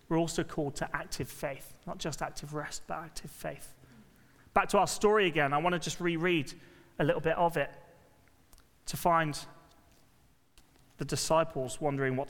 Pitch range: 140-195 Hz